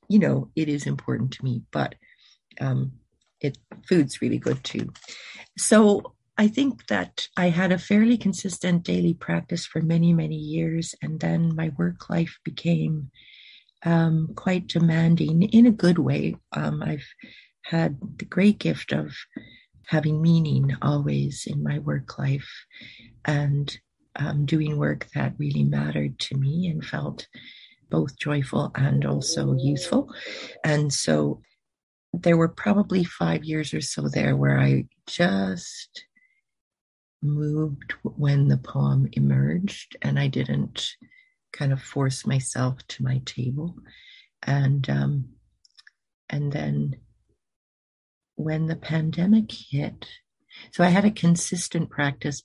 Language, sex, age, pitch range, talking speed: English, female, 40-59, 120-175 Hz, 130 wpm